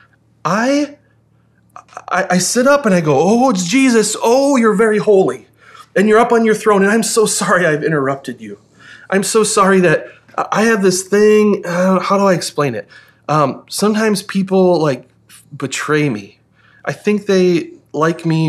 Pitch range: 120-185 Hz